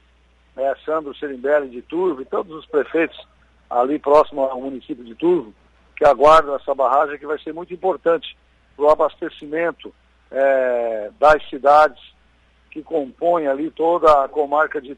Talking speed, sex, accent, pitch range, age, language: 150 wpm, male, Brazilian, 120-165 Hz, 60-79, Portuguese